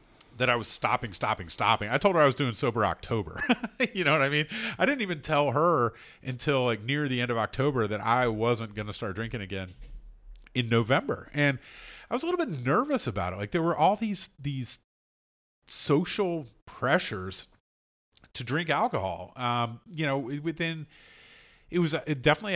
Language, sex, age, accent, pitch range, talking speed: English, male, 40-59, American, 105-145 Hz, 185 wpm